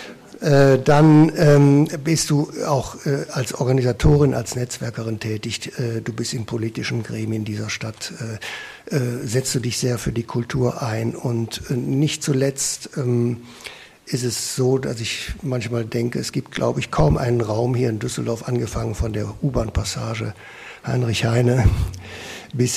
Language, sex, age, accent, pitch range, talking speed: German, male, 60-79, German, 115-140 Hz, 155 wpm